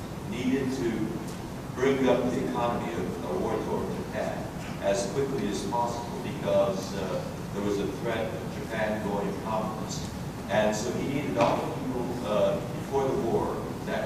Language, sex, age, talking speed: English, male, 50-69, 155 wpm